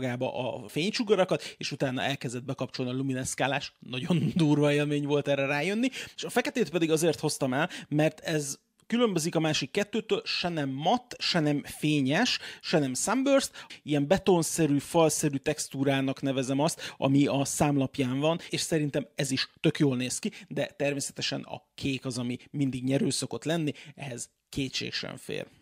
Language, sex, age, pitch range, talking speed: Hungarian, male, 30-49, 135-165 Hz, 160 wpm